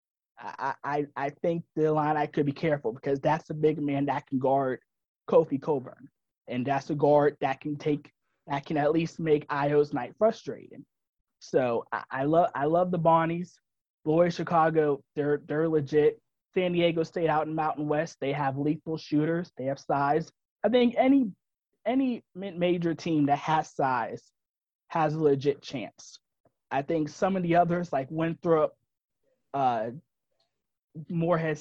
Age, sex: 20-39, male